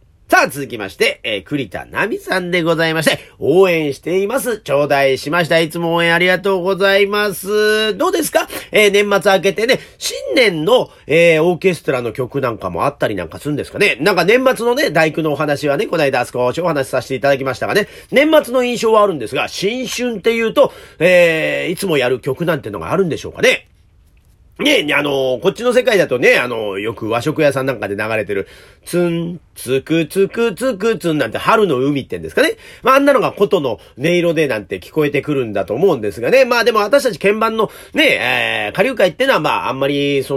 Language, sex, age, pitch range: Japanese, male, 40-59, 140-220 Hz